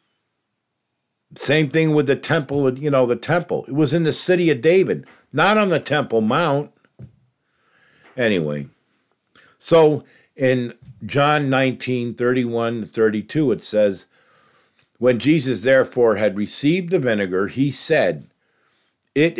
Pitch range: 110-145 Hz